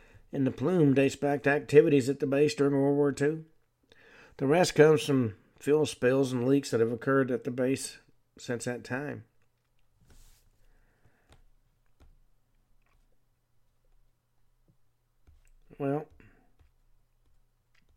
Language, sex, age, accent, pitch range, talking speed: English, male, 50-69, American, 115-125 Hz, 105 wpm